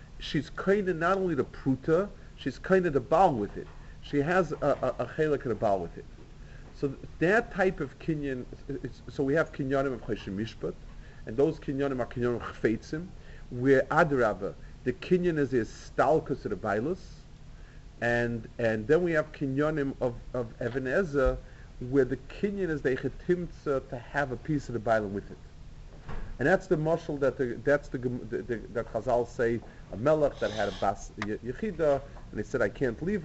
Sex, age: male, 40-59